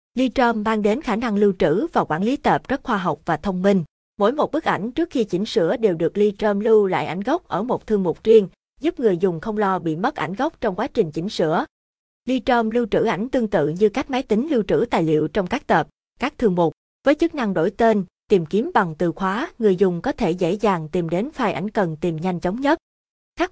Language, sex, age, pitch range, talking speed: Vietnamese, female, 20-39, 180-235 Hz, 250 wpm